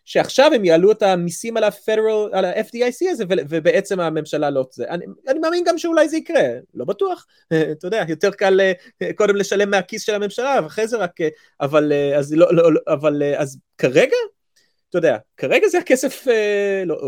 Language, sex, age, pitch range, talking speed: Hebrew, male, 30-49, 145-200 Hz, 170 wpm